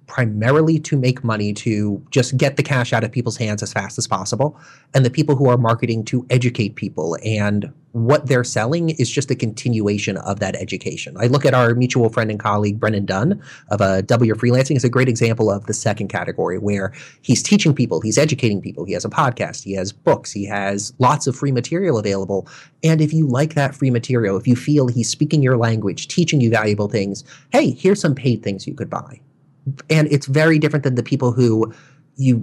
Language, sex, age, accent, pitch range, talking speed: English, male, 30-49, American, 110-140 Hz, 215 wpm